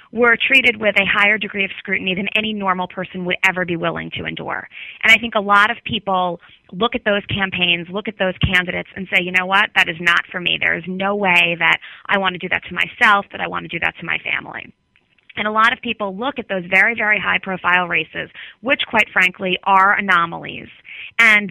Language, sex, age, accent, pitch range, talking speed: English, female, 20-39, American, 180-215 Hz, 230 wpm